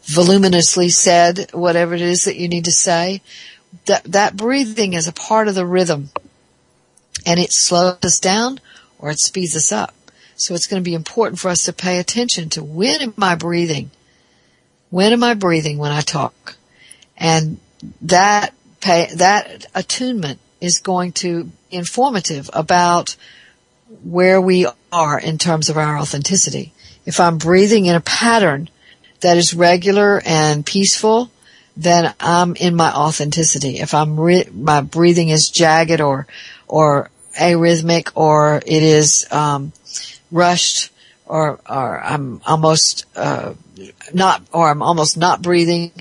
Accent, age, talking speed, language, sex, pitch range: American, 60-79, 145 wpm, English, female, 155-185 Hz